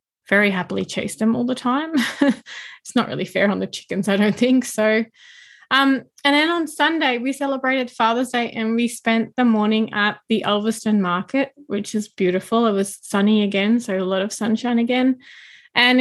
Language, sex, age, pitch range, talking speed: English, female, 20-39, 200-250 Hz, 185 wpm